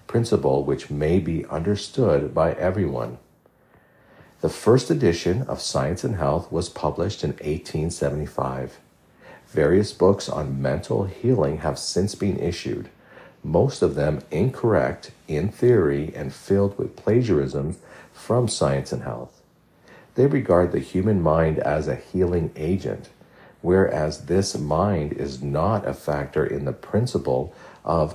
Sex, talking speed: male, 130 wpm